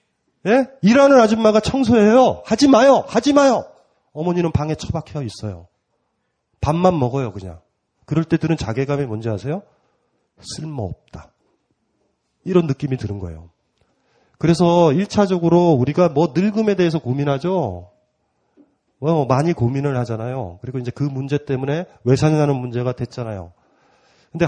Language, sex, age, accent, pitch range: Korean, male, 30-49, native, 115-165 Hz